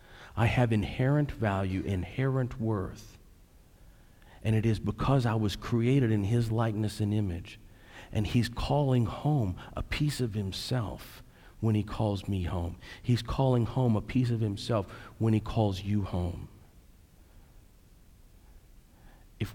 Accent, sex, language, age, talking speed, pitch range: American, male, English, 50-69, 135 wpm, 95-130 Hz